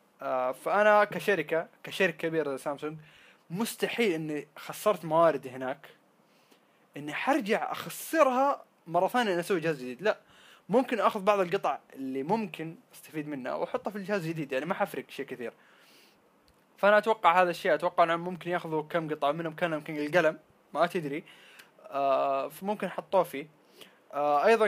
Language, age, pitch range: Arabic, 20-39, 140-185 Hz